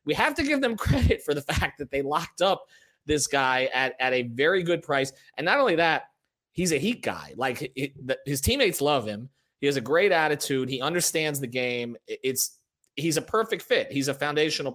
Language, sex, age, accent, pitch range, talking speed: English, male, 30-49, American, 130-170 Hz, 210 wpm